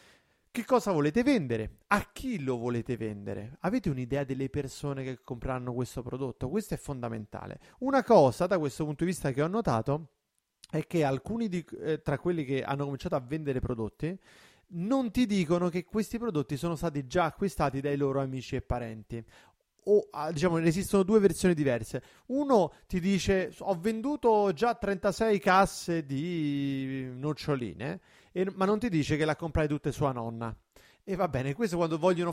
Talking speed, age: 170 wpm, 30-49